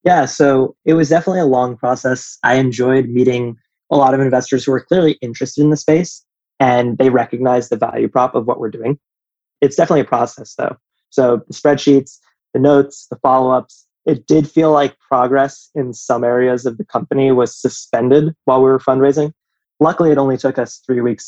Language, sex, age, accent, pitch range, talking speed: English, male, 20-39, American, 120-140 Hz, 190 wpm